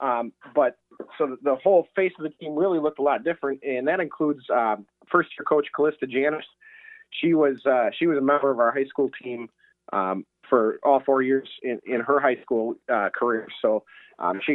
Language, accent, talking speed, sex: English, American, 210 wpm, male